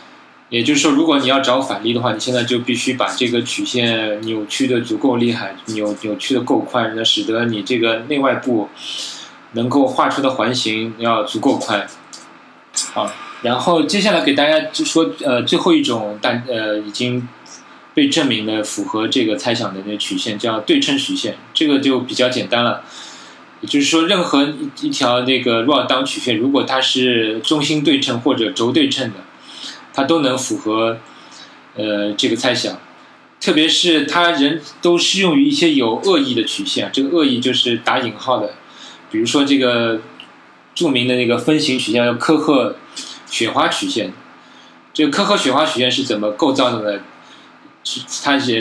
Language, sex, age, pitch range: Chinese, male, 20-39, 115-160 Hz